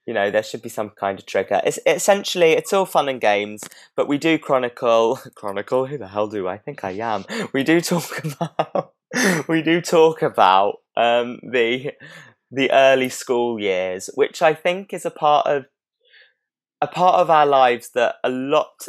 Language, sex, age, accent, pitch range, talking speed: English, male, 20-39, British, 105-160 Hz, 185 wpm